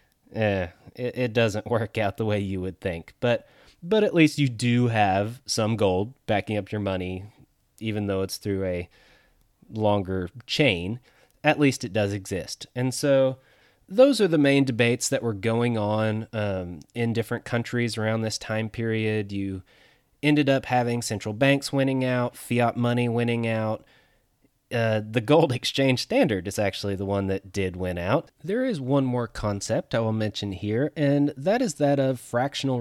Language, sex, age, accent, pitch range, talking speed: English, male, 20-39, American, 105-135 Hz, 170 wpm